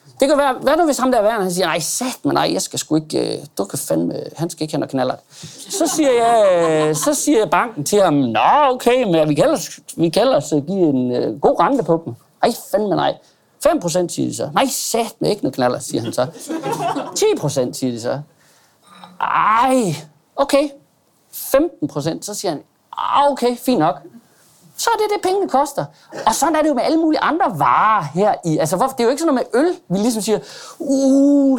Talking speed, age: 210 wpm, 40-59